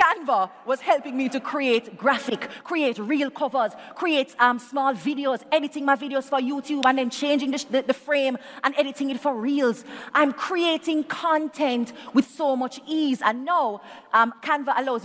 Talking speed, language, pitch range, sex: 170 wpm, English, 200-275 Hz, female